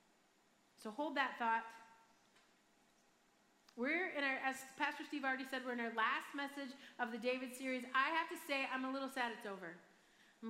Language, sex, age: English, female, 30-49